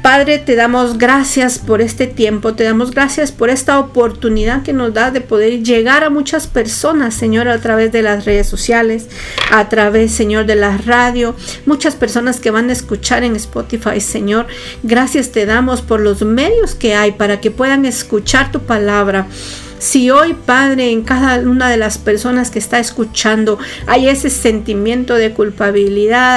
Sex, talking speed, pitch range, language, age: female, 170 wpm, 220-260 Hz, Spanish, 50-69